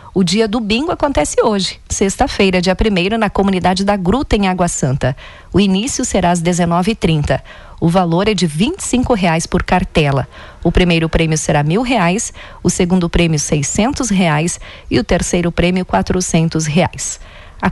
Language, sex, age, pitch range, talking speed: Portuguese, female, 40-59, 165-200 Hz, 165 wpm